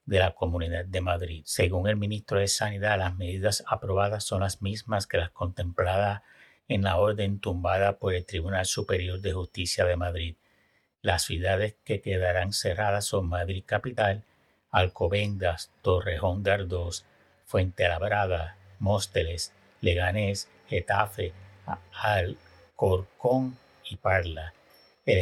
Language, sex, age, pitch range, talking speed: Spanish, male, 60-79, 90-105 Hz, 125 wpm